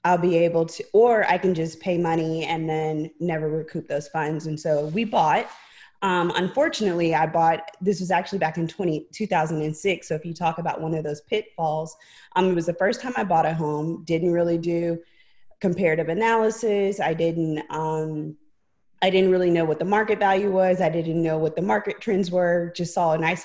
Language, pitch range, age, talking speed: English, 155-180 Hz, 20-39, 200 wpm